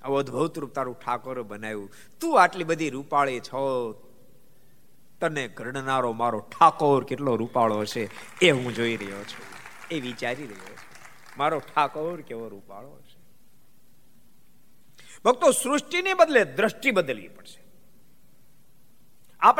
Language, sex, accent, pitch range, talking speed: Gujarati, male, native, 110-145 Hz, 35 wpm